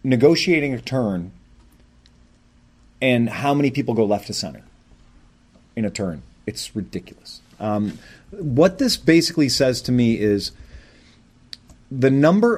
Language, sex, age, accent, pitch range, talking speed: English, male, 30-49, American, 110-145 Hz, 125 wpm